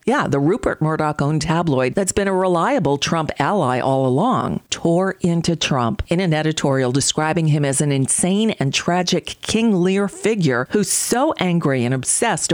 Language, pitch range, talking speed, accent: English, 140-180 Hz, 165 wpm, American